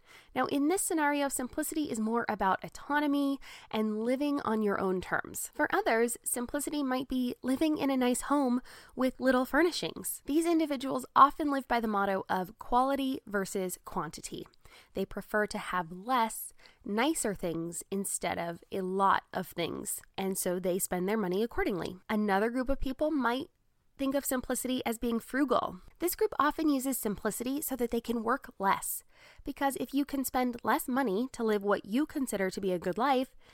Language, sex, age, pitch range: English, female, 20-39, 215-290 Hz